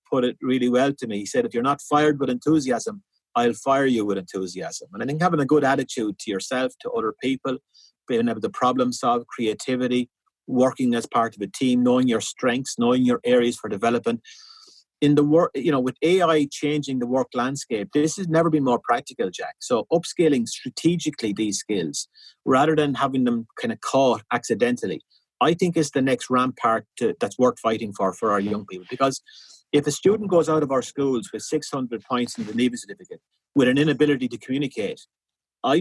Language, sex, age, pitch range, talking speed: English, male, 30-49, 125-165 Hz, 200 wpm